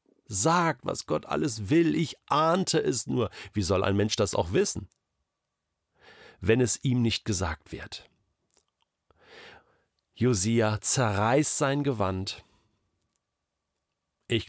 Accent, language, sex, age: German, German, male, 40-59